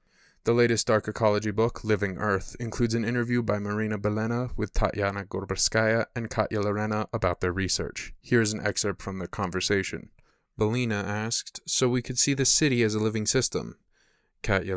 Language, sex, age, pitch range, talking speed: English, male, 20-39, 95-115 Hz, 170 wpm